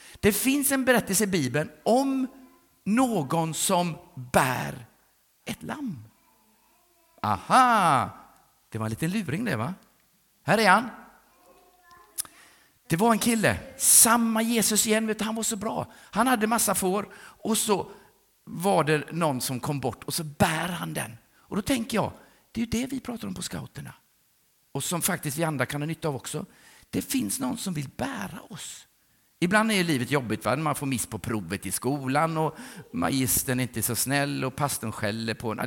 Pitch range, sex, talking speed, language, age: 140-215 Hz, male, 175 wpm, English, 50-69